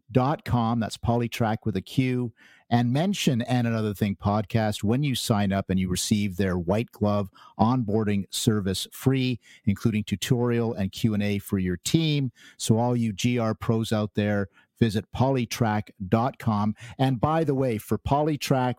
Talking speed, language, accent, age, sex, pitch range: 160 wpm, English, American, 50-69, male, 100-120 Hz